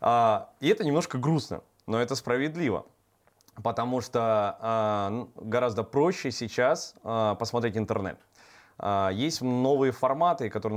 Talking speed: 100 wpm